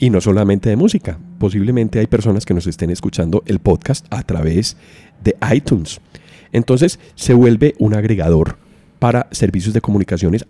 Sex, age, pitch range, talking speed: male, 40-59, 90-120 Hz, 155 wpm